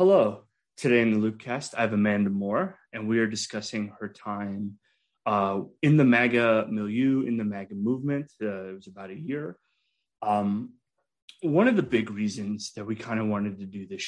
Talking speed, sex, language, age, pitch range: 190 wpm, male, English, 30-49, 100-125 Hz